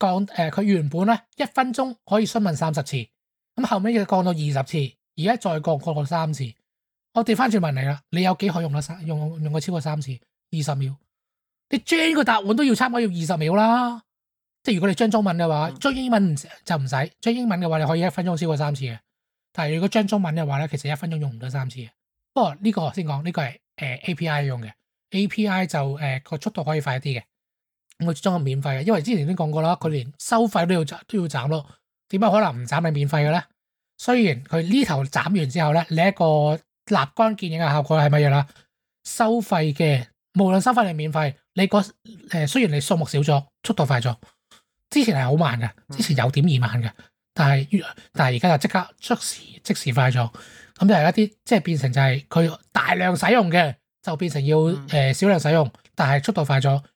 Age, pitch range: 20-39, 145-205 Hz